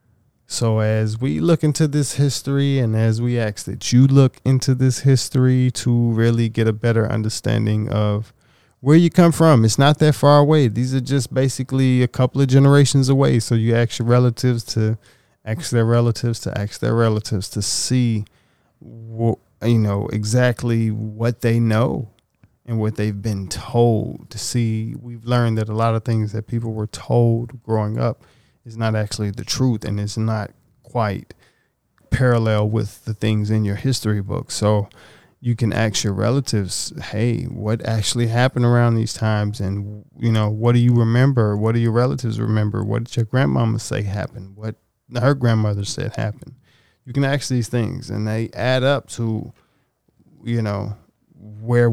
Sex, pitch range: male, 110-125 Hz